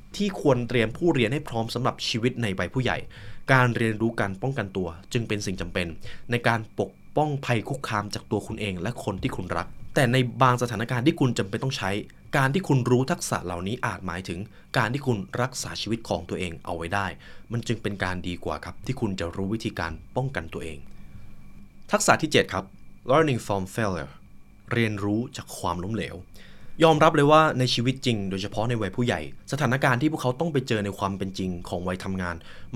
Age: 20-39